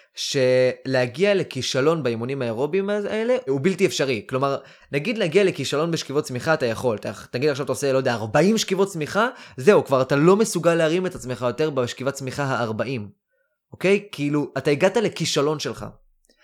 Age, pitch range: 20-39, 130-195 Hz